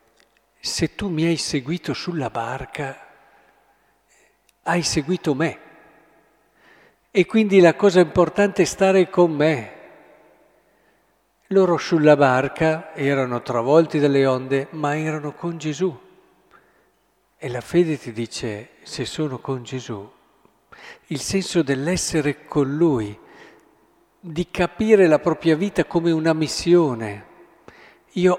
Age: 50-69